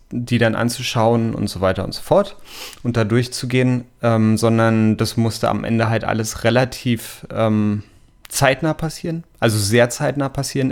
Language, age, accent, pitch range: German, 30-49, German, 105-120 Hz